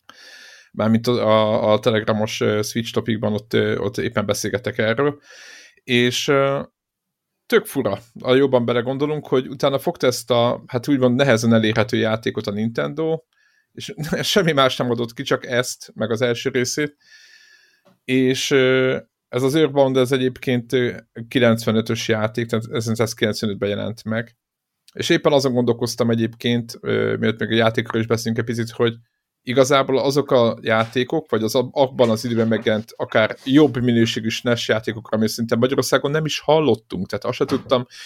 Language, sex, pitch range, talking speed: Hungarian, male, 110-135 Hz, 160 wpm